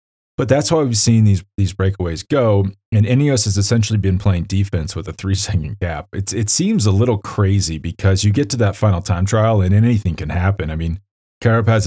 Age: 30-49